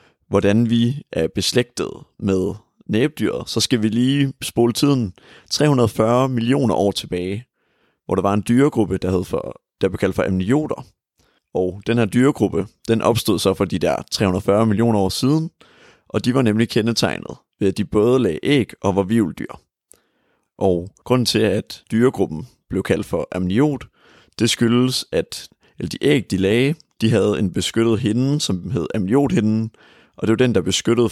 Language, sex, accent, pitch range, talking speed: Danish, male, native, 100-125 Hz, 170 wpm